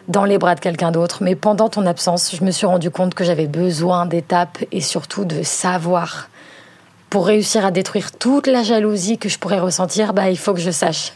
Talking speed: 215 wpm